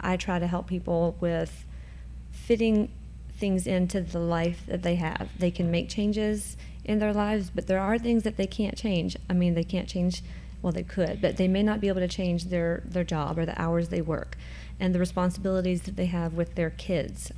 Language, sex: English, female